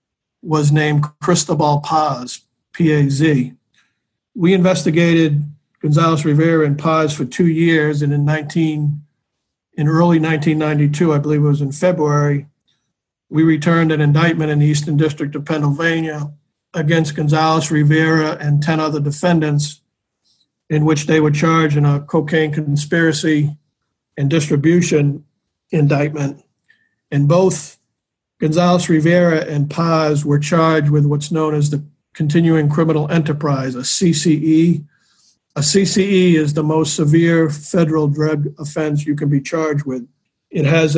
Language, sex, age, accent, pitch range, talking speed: English, male, 50-69, American, 145-165 Hz, 130 wpm